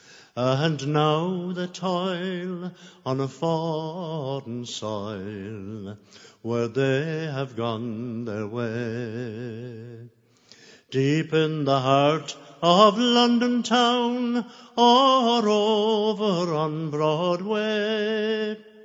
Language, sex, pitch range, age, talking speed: English, male, 120-200 Hz, 60-79, 80 wpm